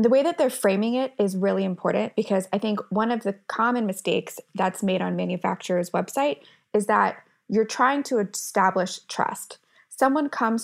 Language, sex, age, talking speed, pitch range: English, female, 20-39, 175 wpm, 190-240 Hz